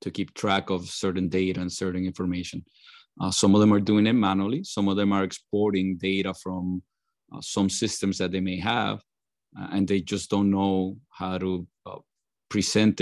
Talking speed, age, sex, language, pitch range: 190 wpm, 30-49, male, English, 95-105 Hz